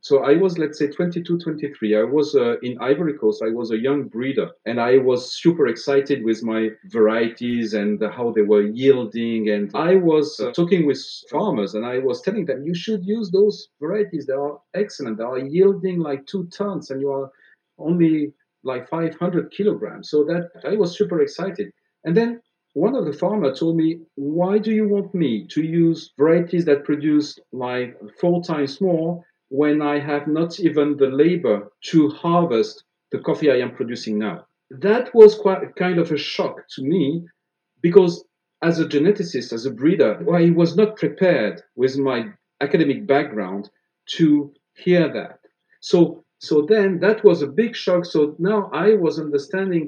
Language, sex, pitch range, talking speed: English, male, 135-180 Hz, 180 wpm